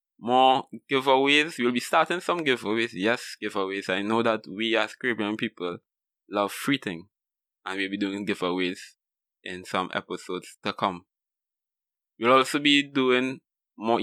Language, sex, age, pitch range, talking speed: English, male, 20-39, 105-130 Hz, 145 wpm